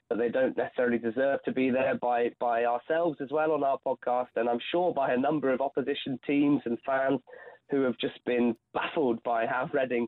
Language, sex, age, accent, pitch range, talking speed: English, male, 20-39, British, 120-145 Hz, 210 wpm